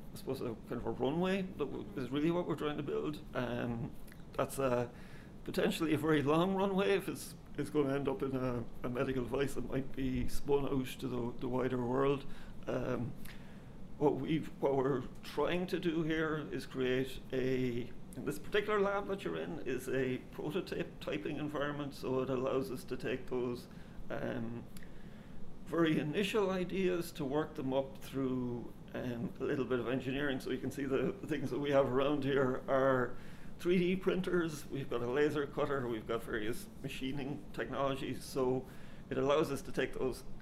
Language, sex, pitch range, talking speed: English, male, 130-170 Hz, 185 wpm